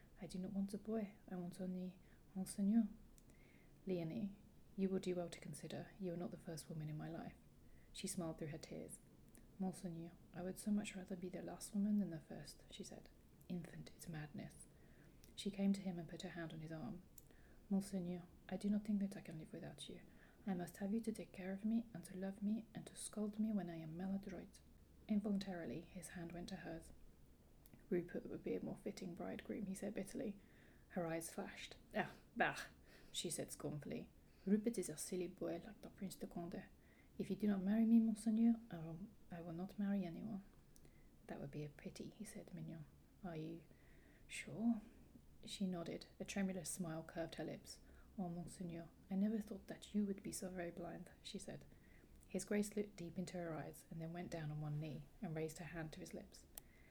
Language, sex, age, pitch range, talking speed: English, female, 30-49, 170-205 Hz, 200 wpm